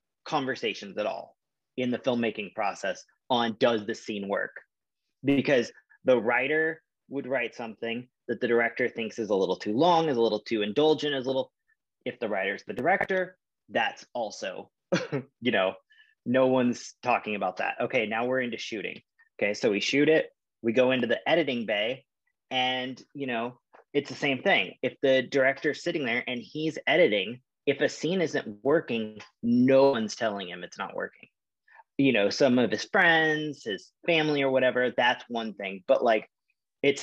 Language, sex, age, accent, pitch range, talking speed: English, male, 30-49, American, 115-150 Hz, 175 wpm